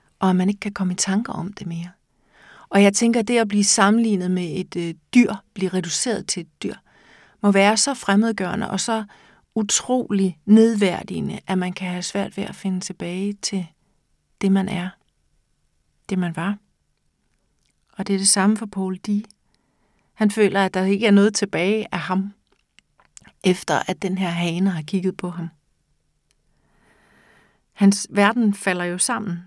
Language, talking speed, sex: Danish, 170 wpm, female